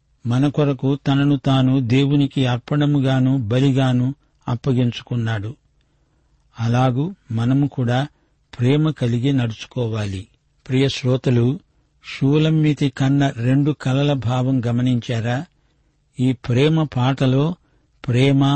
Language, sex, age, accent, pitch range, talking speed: Telugu, male, 60-79, native, 125-140 Hz, 80 wpm